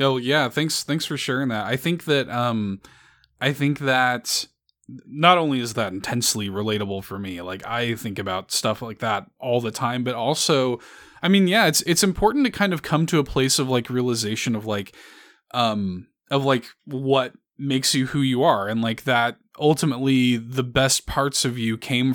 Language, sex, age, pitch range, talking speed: English, male, 20-39, 110-140 Hz, 190 wpm